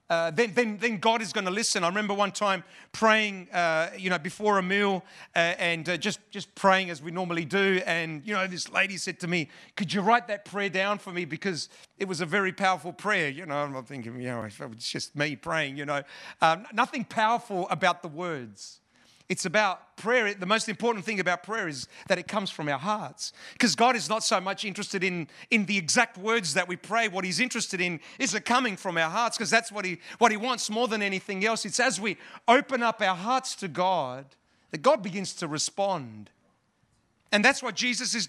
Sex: male